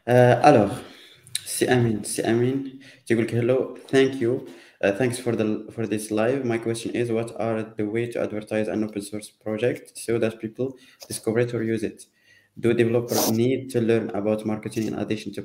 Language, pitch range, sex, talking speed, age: Arabic, 110-130 Hz, male, 185 wpm, 20-39